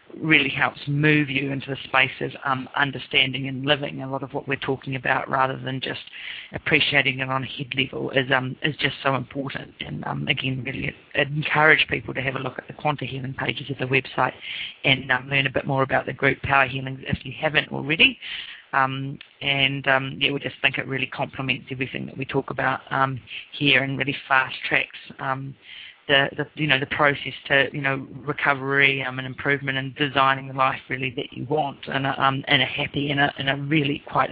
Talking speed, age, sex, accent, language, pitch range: 215 wpm, 30-49, female, Australian, English, 135-150 Hz